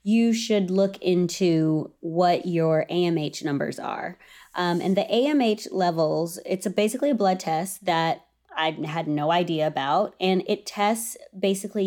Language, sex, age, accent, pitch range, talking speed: English, female, 20-39, American, 170-210 Hz, 145 wpm